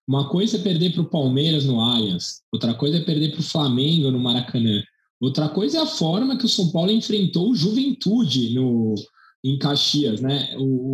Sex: male